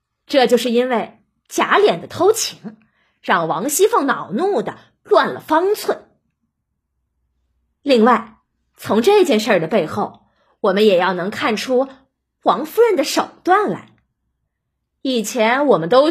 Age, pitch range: 20-39, 230-370 Hz